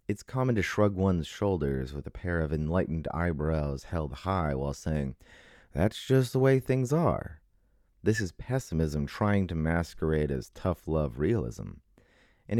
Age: 30-49